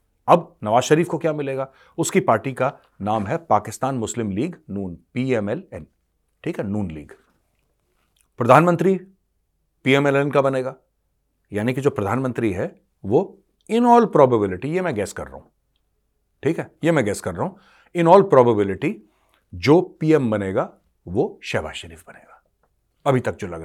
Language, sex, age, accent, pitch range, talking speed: Hindi, male, 40-59, native, 95-150 Hz, 150 wpm